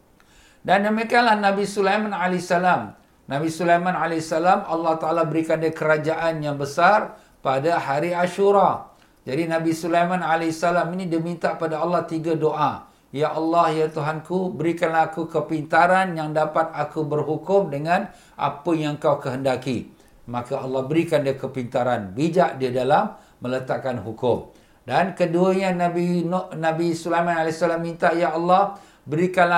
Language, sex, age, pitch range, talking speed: Malay, male, 60-79, 155-180 Hz, 135 wpm